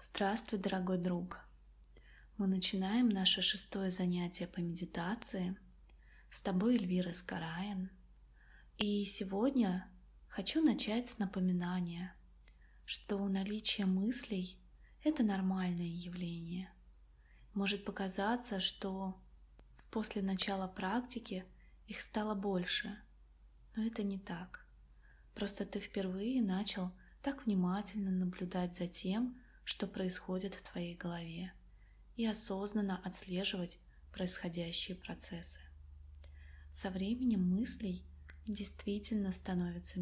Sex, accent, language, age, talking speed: female, native, Russian, 20-39, 95 wpm